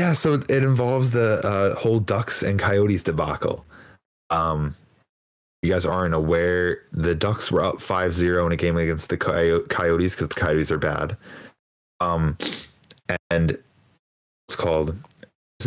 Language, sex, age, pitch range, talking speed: English, male, 10-29, 80-105 Hz, 150 wpm